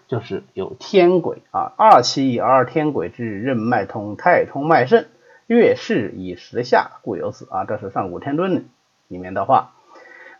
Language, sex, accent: Chinese, male, native